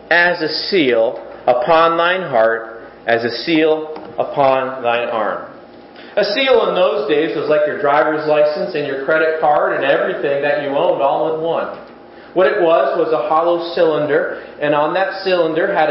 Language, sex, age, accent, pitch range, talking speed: English, male, 40-59, American, 135-190 Hz, 175 wpm